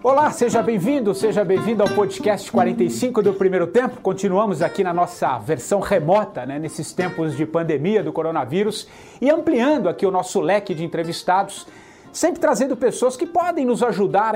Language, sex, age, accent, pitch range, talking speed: English, male, 40-59, Brazilian, 195-270 Hz, 165 wpm